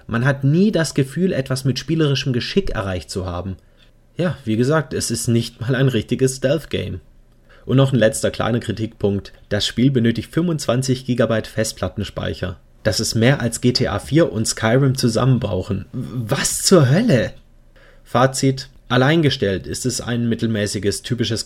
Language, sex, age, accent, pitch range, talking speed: German, male, 30-49, German, 100-130 Hz, 150 wpm